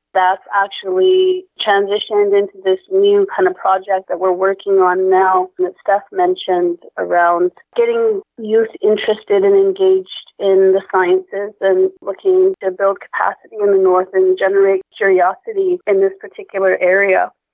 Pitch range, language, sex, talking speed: 195-230 Hz, English, female, 140 wpm